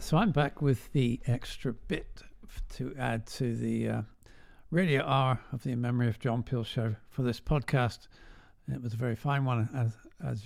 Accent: British